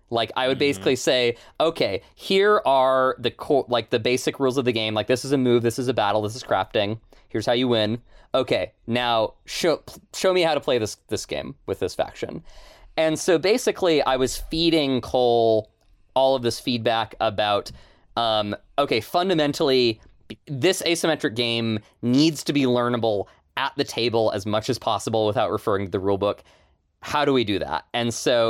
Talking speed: 185 wpm